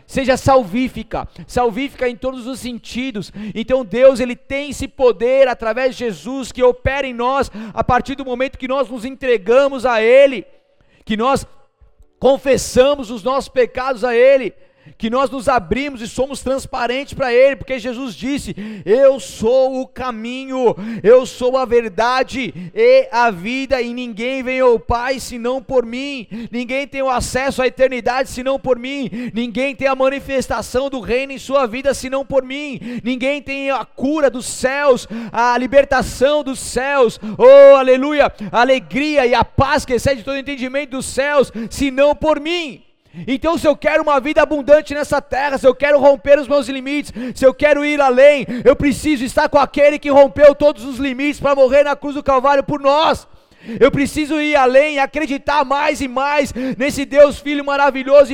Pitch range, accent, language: 245-280 Hz, Brazilian, Portuguese